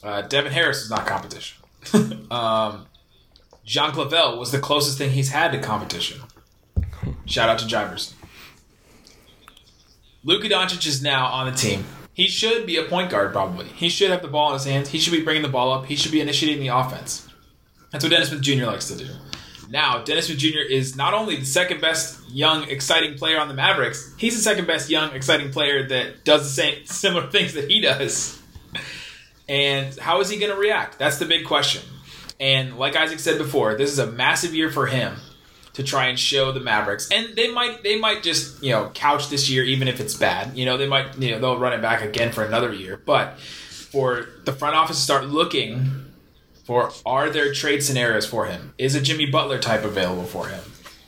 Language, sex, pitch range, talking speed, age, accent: English, male, 125-155 Hz, 210 wpm, 20-39, American